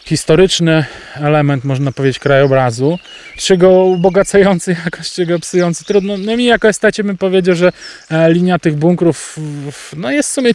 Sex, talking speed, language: male, 135 wpm, Polish